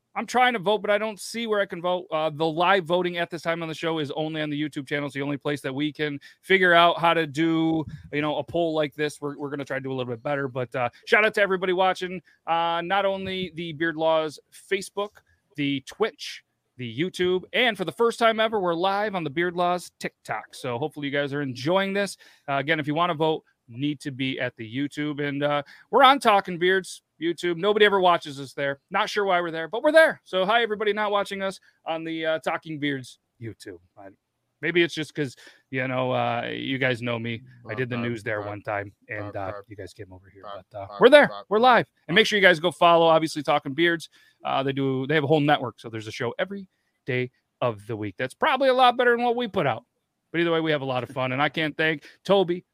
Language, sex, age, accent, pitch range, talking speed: English, male, 30-49, American, 135-185 Hz, 255 wpm